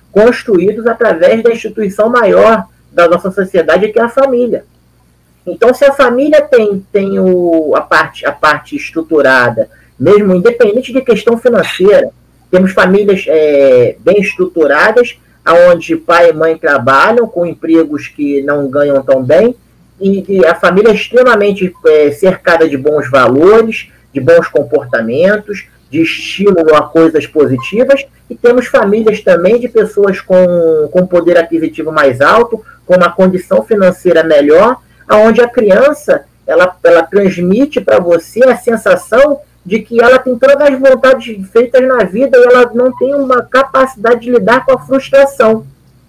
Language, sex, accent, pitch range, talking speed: Portuguese, male, Brazilian, 170-245 Hz, 140 wpm